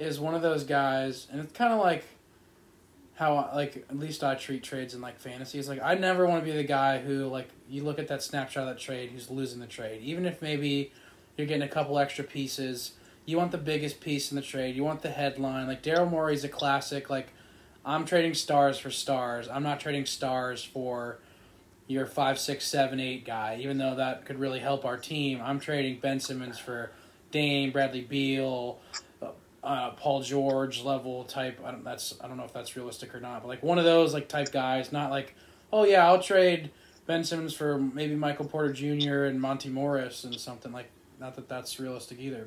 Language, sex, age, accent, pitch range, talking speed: English, male, 20-39, American, 130-150 Hz, 210 wpm